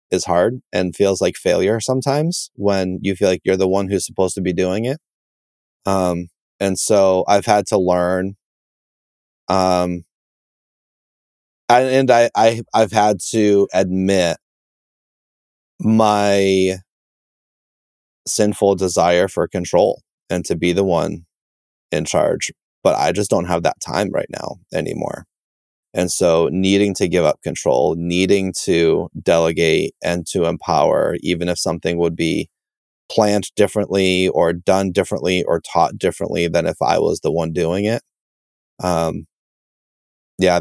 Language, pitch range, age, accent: English, 85-105 Hz, 20-39, American